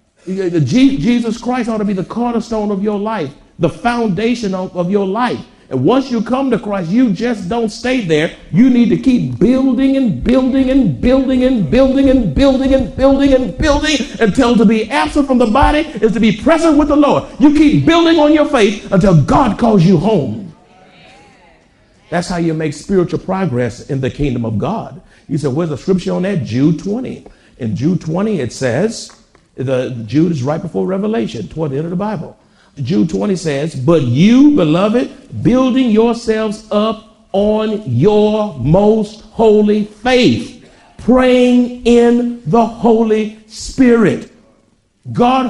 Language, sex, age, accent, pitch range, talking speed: English, male, 50-69, American, 185-245 Hz, 165 wpm